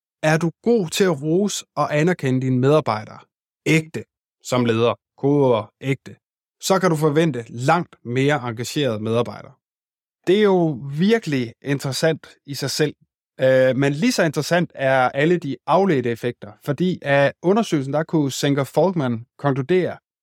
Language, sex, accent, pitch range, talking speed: Danish, male, native, 130-170 Hz, 145 wpm